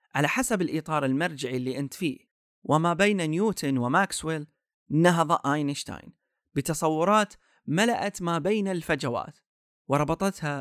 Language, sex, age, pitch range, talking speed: Arabic, male, 30-49, 140-205 Hz, 105 wpm